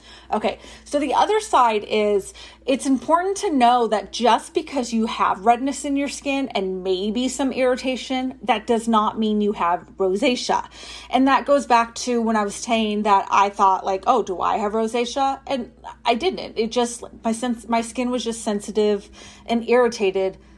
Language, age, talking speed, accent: English, 30-49, 180 wpm, American